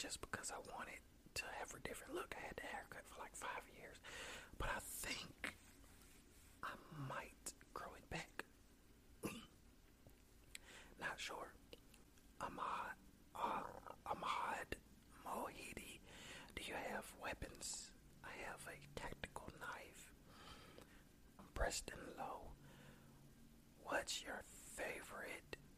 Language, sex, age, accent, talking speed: English, male, 40-59, American, 105 wpm